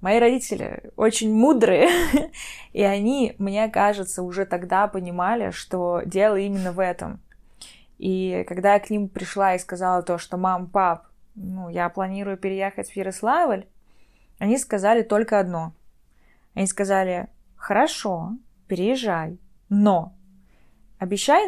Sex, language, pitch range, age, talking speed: female, Russian, 180-230 Hz, 20-39, 125 wpm